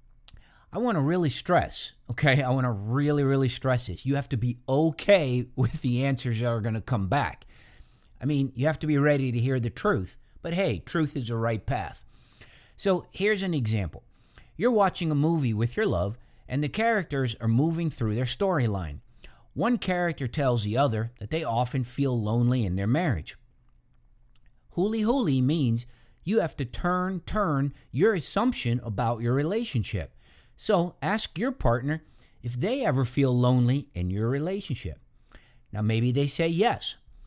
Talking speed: 170 wpm